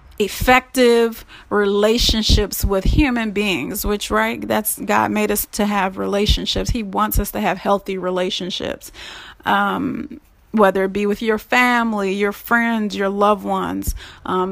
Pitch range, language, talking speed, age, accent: 200-225 Hz, English, 140 wpm, 30-49, American